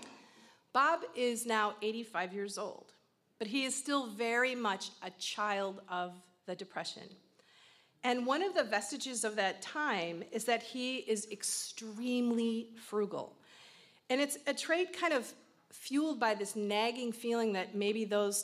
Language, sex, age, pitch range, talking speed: English, female, 40-59, 190-240 Hz, 145 wpm